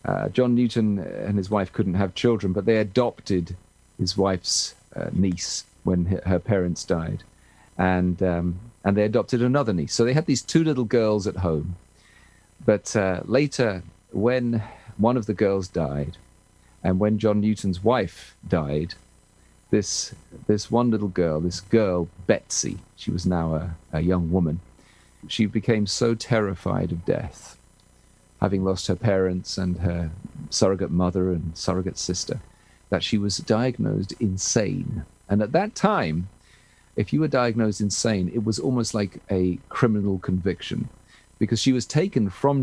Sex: male